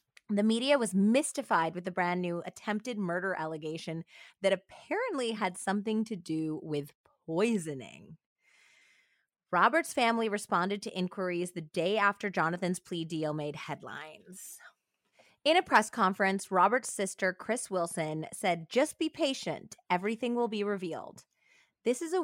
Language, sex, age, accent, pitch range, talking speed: English, female, 20-39, American, 170-220 Hz, 140 wpm